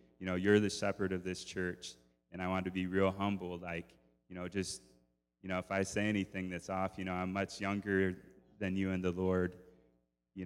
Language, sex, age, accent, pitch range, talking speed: English, male, 20-39, American, 85-95 Hz, 220 wpm